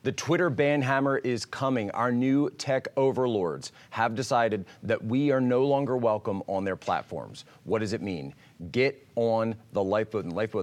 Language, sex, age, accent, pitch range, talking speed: English, male, 30-49, American, 100-130 Hz, 180 wpm